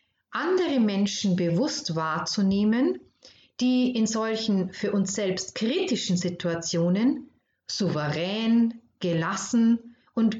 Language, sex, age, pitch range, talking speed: German, female, 40-59, 185-255 Hz, 85 wpm